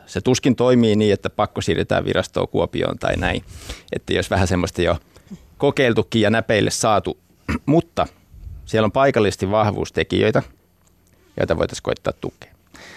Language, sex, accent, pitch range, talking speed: Finnish, male, native, 90-115 Hz, 135 wpm